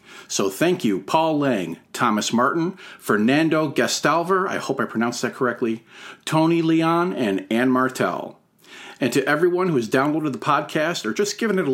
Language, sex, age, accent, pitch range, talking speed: English, male, 40-59, American, 125-180 Hz, 170 wpm